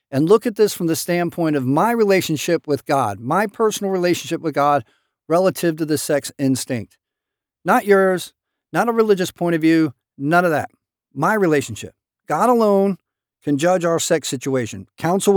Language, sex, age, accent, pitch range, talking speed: English, male, 50-69, American, 150-205 Hz, 170 wpm